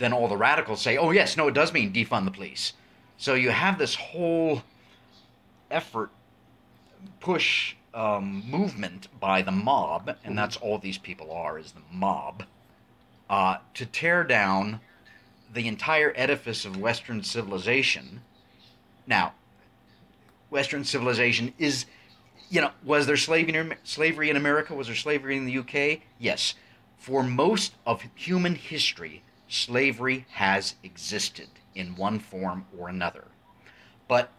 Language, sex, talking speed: English, male, 135 wpm